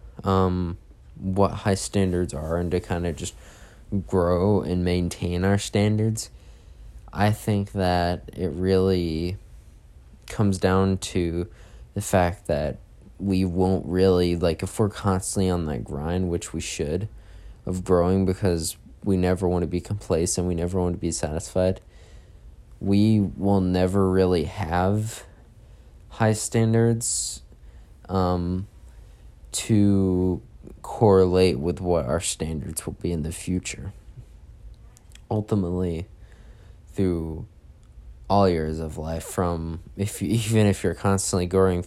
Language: English